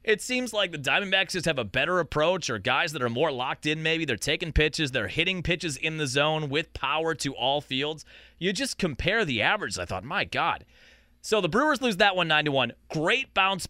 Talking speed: 220 wpm